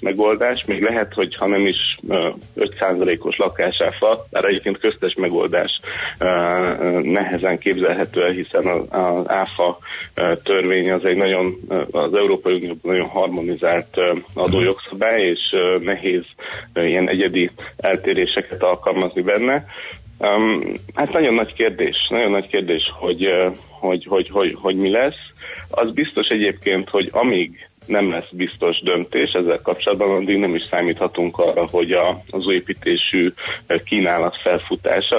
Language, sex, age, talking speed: Hungarian, male, 30-49, 130 wpm